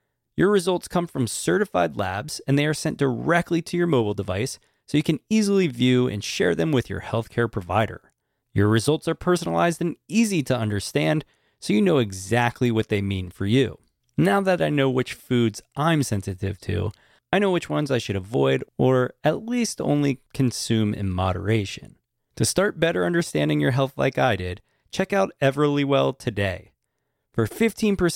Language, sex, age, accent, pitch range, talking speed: English, male, 30-49, American, 100-145 Hz, 175 wpm